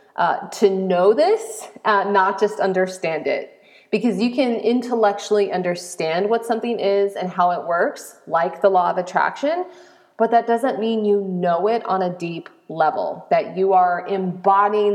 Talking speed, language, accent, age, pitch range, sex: 165 wpm, English, American, 30-49, 185-225 Hz, female